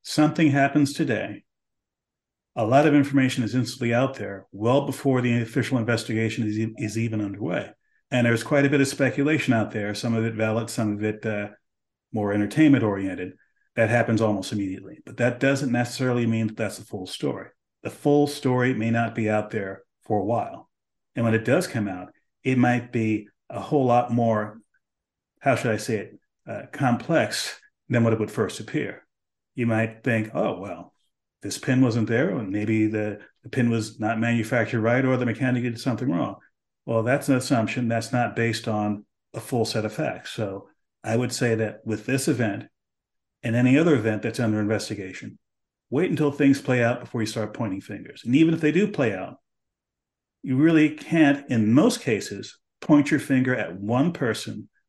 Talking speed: 185 wpm